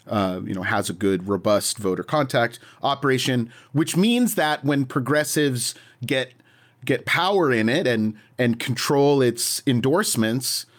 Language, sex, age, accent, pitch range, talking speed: English, male, 30-49, American, 115-140 Hz, 140 wpm